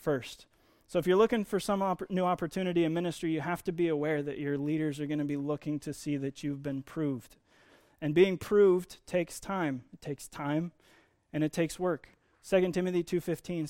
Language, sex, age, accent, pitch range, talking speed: English, male, 20-39, American, 145-180 Hz, 200 wpm